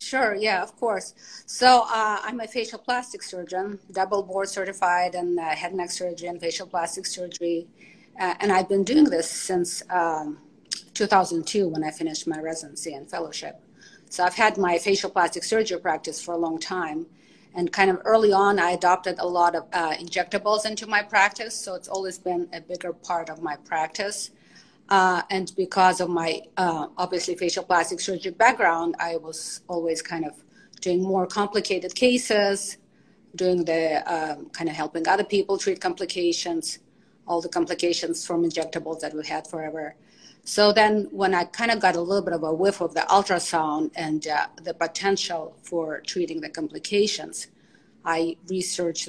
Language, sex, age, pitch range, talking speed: English, female, 30-49, 165-200 Hz, 170 wpm